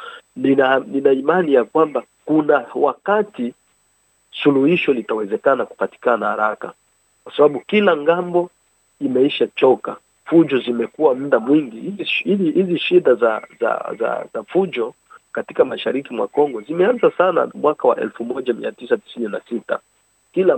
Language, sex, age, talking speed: Swahili, male, 50-69, 115 wpm